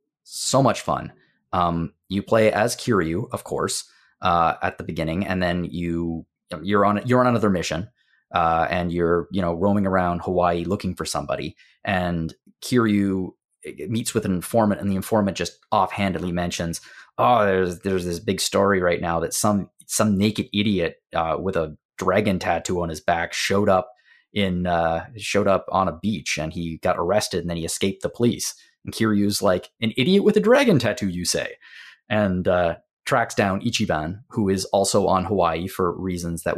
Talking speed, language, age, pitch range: 180 wpm, English, 20-39, 85-105 Hz